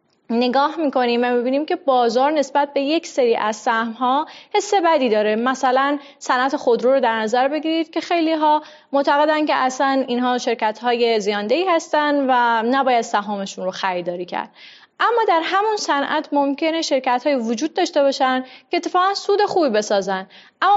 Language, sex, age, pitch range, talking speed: Persian, female, 30-49, 230-310 Hz, 155 wpm